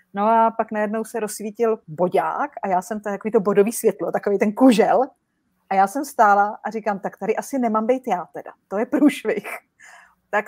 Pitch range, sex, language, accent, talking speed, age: 185-230 Hz, female, Czech, native, 200 wpm, 30-49